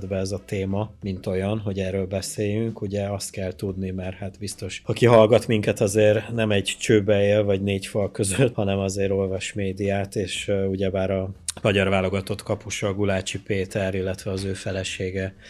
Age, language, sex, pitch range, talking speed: 20-39, Hungarian, male, 95-105 Hz, 180 wpm